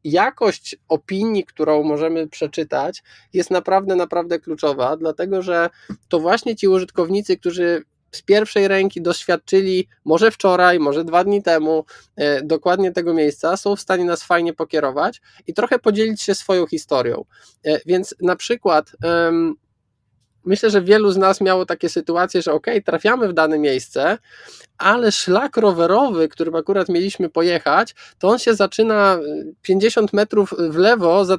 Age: 20-39